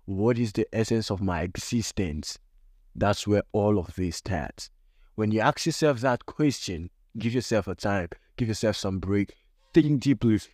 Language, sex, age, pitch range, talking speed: English, male, 20-39, 85-110 Hz, 165 wpm